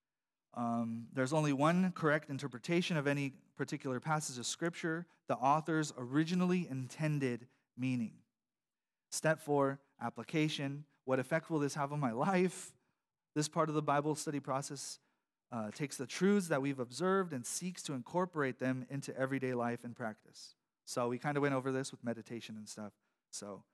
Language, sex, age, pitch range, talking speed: English, male, 30-49, 130-155 Hz, 160 wpm